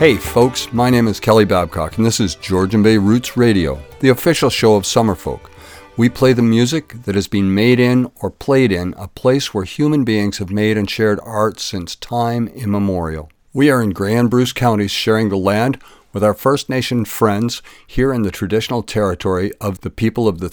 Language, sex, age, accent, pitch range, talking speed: English, male, 50-69, American, 100-120 Hz, 200 wpm